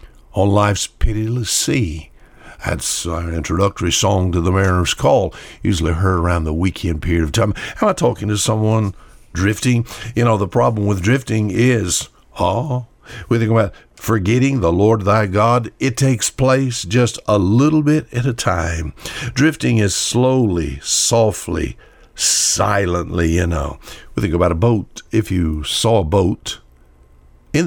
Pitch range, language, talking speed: 90-120 Hz, English, 150 wpm